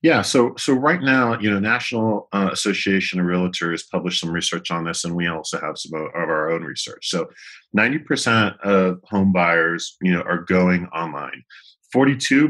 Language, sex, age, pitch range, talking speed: English, male, 40-59, 90-115 Hz, 180 wpm